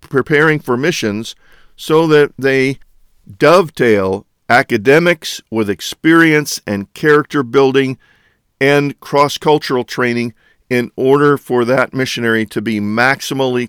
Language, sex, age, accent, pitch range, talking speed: English, male, 50-69, American, 115-155 Hz, 105 wpm